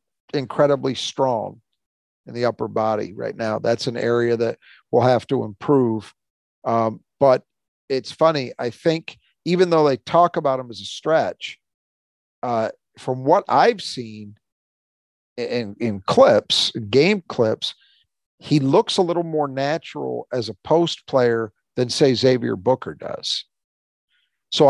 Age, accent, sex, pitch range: 50-69, American, male, 115-140 Hz